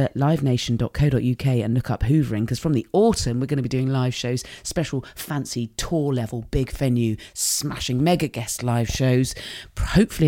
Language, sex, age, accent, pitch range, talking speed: English, female, 30-49, British, 115-140 Hz, 165 wpm